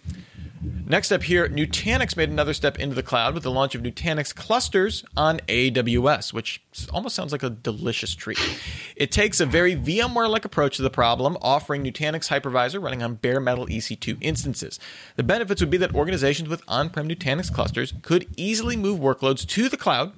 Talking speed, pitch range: 180 wpm, 120-160 Hz